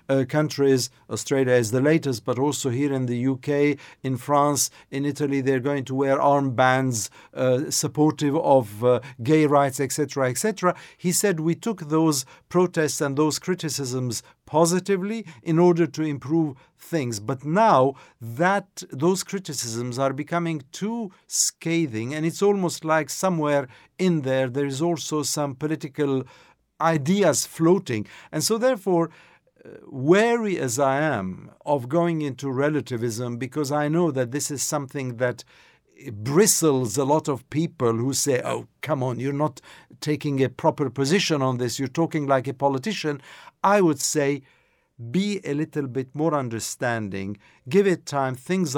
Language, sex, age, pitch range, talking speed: English, male, 50-69, 130-165 Hz, 150 wpm